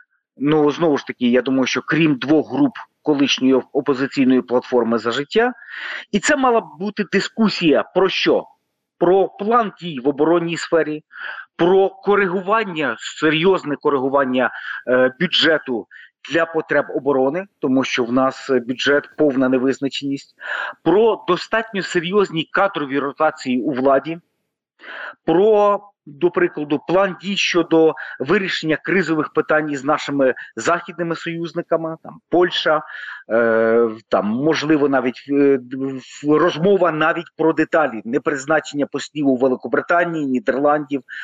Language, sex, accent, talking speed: Ukrainian, male, native, 115 wpm